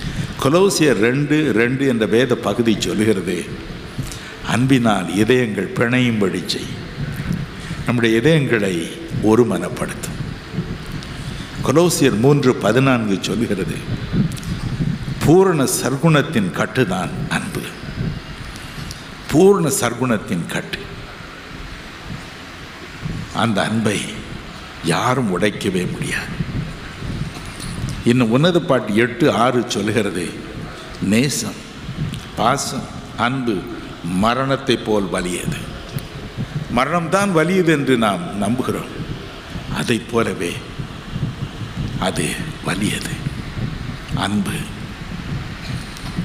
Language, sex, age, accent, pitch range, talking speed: Tamil, male, 60-79, native, 115-150 Hz, 70 wpm